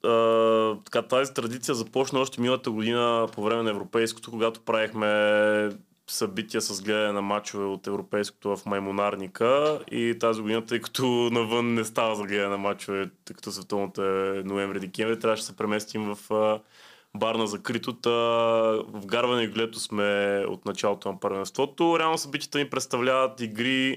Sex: male